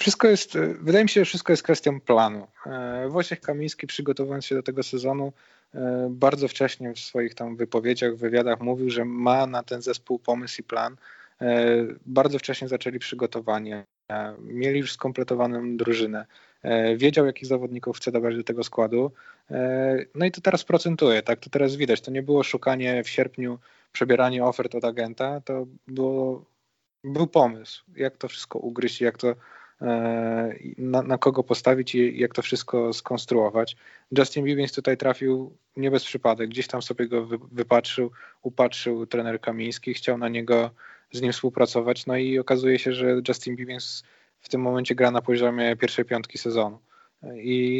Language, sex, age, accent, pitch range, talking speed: Polish, male, 20-39, native, 120-135 Hz, 165 wpm